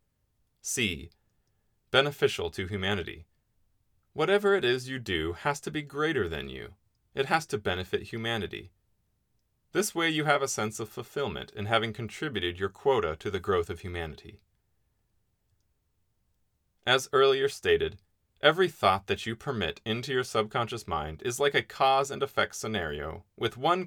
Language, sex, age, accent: English, male, 30-49, American